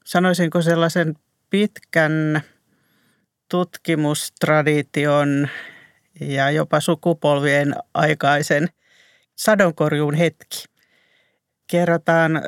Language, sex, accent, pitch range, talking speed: Finnish, male, native, 145-170 Hz, 55 wpm